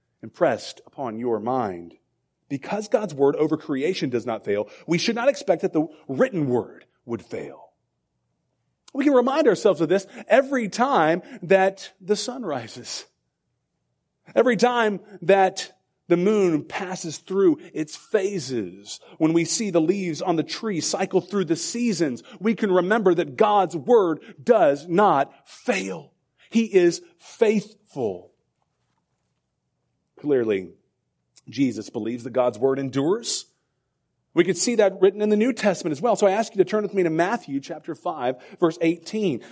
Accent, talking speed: American, 150 wpm